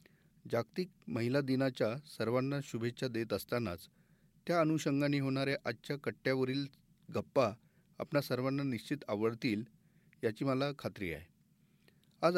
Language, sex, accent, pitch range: Marathi, male, native, 120-155 Hz